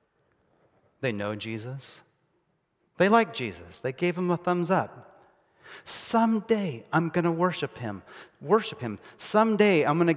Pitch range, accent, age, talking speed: 115-175 Hz, American, 30-49, 130 wpm